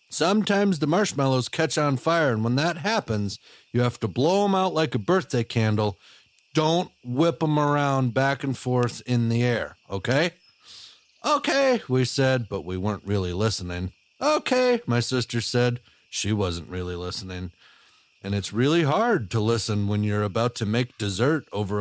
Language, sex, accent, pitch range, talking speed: English, male, American, 100-130 Hz, 165 wpm